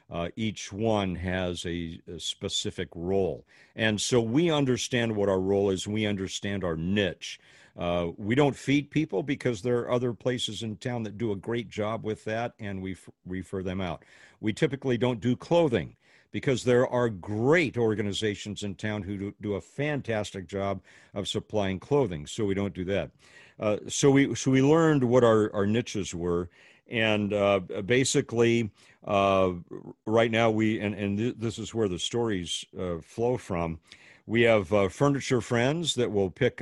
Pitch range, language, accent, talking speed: 95-115 Hz, English, American, 170 wpm